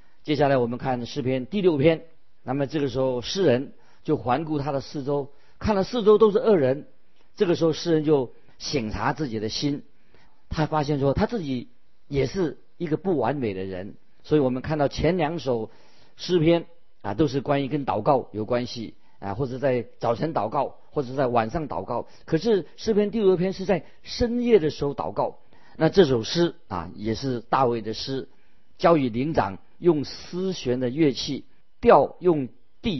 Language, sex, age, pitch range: Chinese, male, 50-69, 125-165 Hz